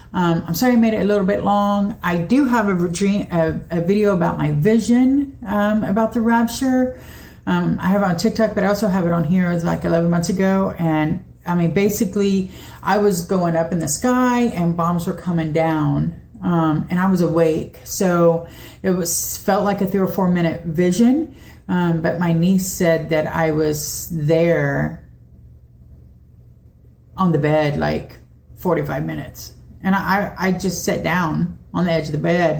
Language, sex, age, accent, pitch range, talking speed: English, female, 40-59, American, 165-205 Hz, 190 wpm